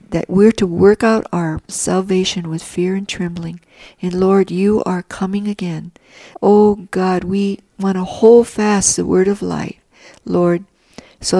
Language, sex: English, female